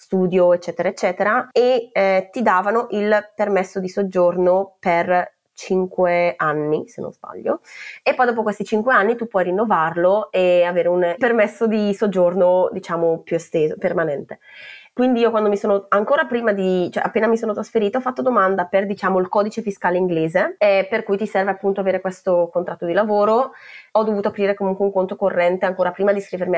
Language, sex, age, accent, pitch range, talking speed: Italian, female, 20-39, native, 175-210 Hz, 180 wpm